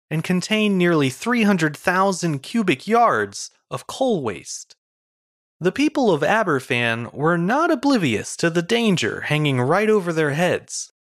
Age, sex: 30-49, male